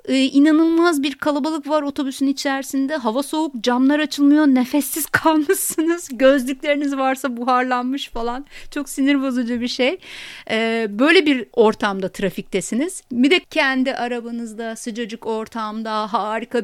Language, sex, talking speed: Turkish, female, 115 wpm